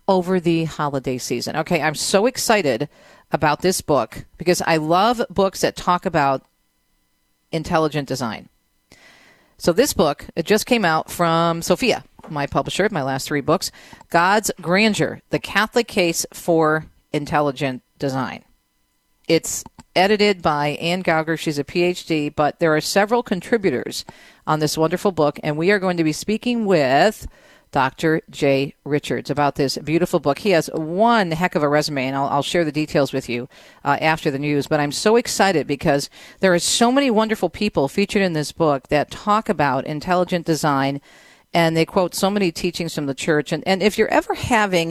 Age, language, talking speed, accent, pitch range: 40-59, English, 175 wpm, American, 150-195 Hz